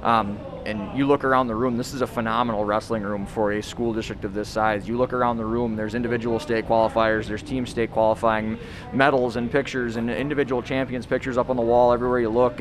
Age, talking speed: 20-39, 225 wpm